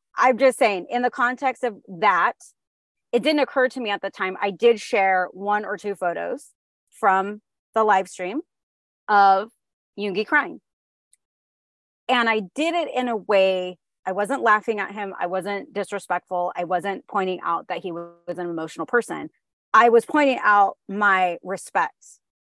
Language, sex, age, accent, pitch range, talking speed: English, female, 30-49, American, 180-235 Hz, 165 wpm